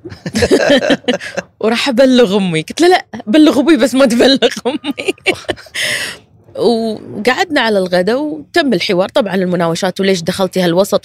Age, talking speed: 20-39, 115 wpm